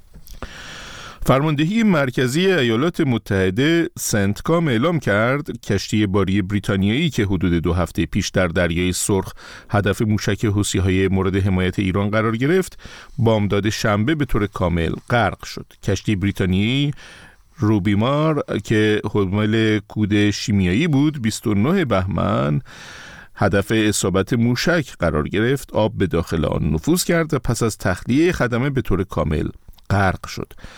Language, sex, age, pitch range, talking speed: Persian, male, 50-69, 95-130 Hz, 125 wpm